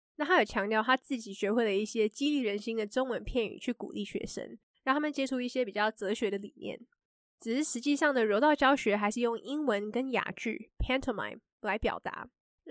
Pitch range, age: 210-265 Hz, 20-39